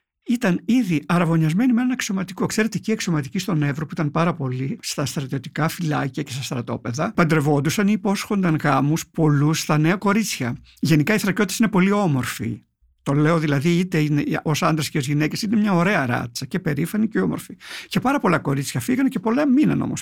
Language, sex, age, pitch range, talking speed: Greek, male, 50-69, 145-195 Hz, 185 wpm